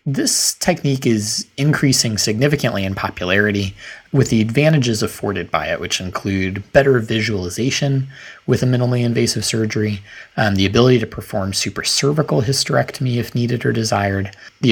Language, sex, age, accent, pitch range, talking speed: English, male, 30-49, American, 100-130 Hz, 140 wpm